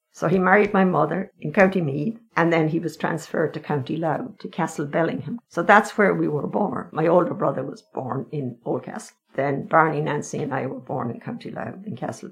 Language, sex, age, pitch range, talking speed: English, female, 60-79, 165-205 Hz, 215 wpm